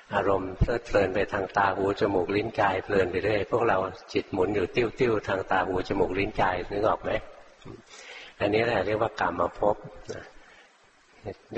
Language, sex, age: Thai, male, 60-79